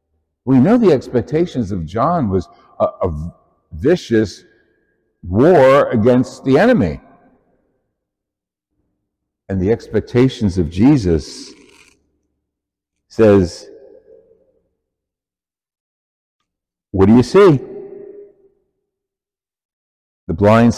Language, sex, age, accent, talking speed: English, male, 60-79, American, 75 wpm